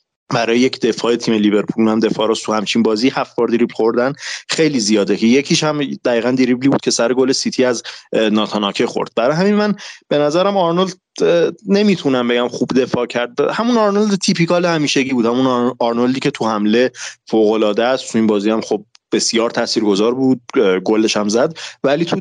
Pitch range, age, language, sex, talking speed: 110-150 Hz, 30-49, English, male, 175 wpm